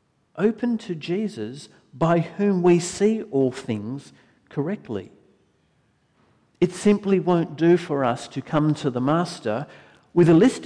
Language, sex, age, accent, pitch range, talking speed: English, male, 50-69, Australian, 130-180 Hz, 135 wpm